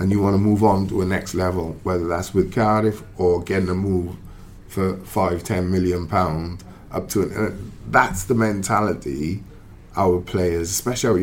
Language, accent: English, British